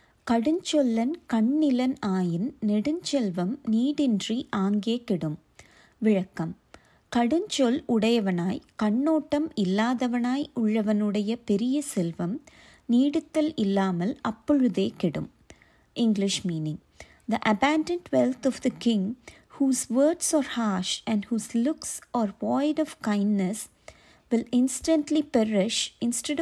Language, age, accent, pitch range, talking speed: Tamil, 30-49, native, 210-280 Hz, 95 wpm